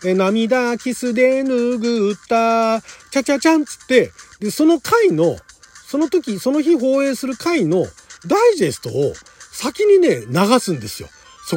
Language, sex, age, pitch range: Japanese, male, 40-59, 155-255 Hz